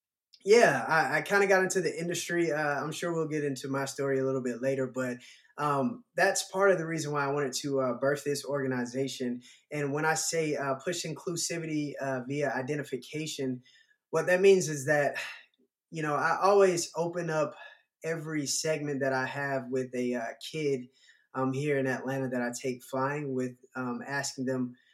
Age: 20-39